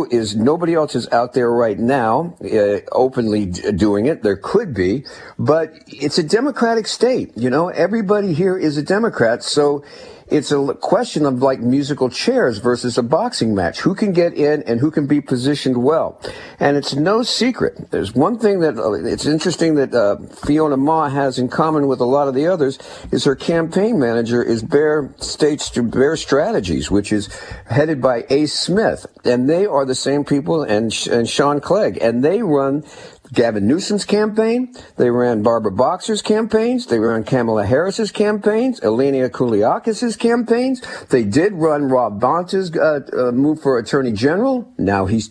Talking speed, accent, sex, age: 170 wpm, American, male, 50-69